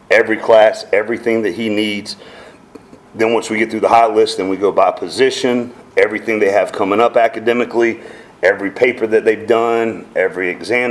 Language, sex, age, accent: English, male, 40-59, American